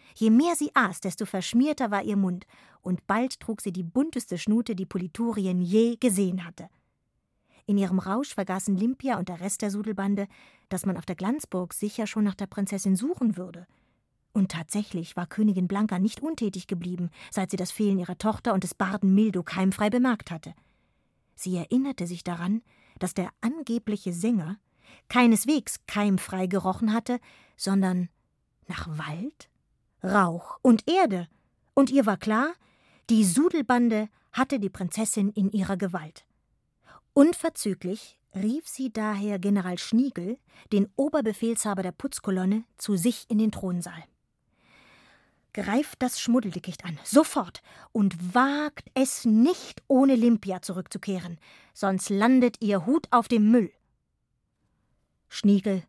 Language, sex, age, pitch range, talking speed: German, female, 20-39, 185-235 Hz, 140 wpm